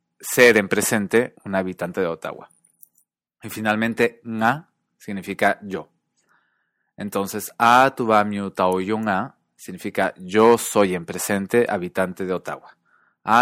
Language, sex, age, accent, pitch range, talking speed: English, male, 20-39, Mexican, 90-110 Hz, 110 wpm